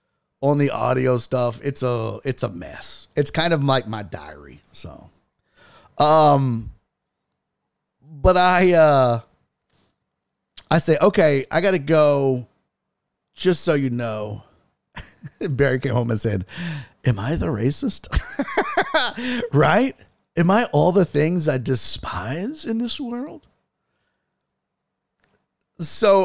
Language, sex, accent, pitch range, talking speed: English, male, American, 110-160 Hz, 120 wpm